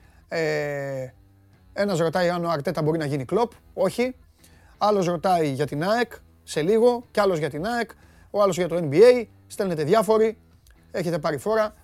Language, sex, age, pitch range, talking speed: Greek, male, 30-49, 145-210 Hz, 160 wpm